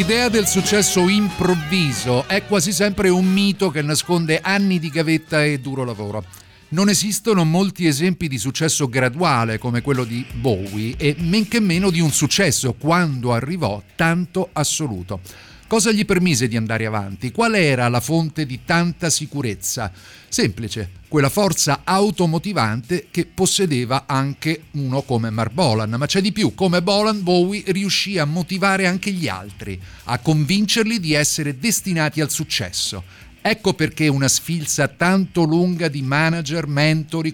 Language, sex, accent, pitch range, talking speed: Italian, male, native, 130-180 Hz, 150 wpm